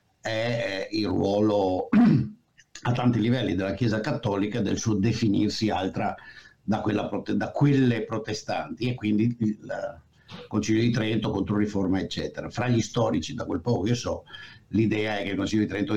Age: 60-79